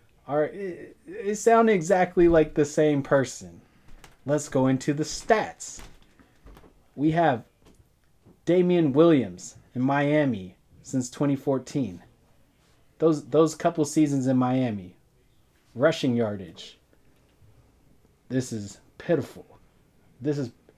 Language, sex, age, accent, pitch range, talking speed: English, male, 20-39, American, 110-150 Hz, 100 wpm